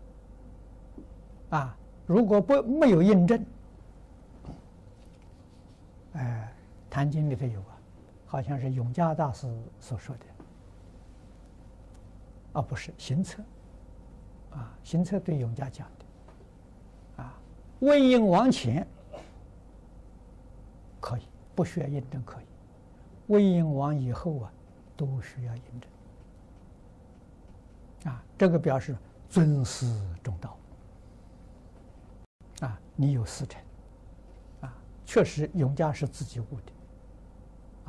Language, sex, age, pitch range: Chinese, male, 60-79, 90-135 Hz